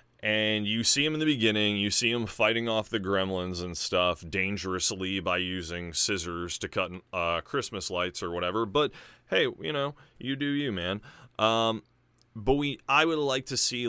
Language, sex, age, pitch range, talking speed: English, male, 30-49, 90-115 Hz, 180 wpm